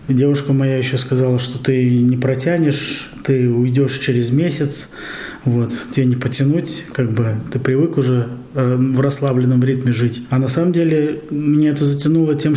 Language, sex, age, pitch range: Russian, male, 20-39, 120-140 Hz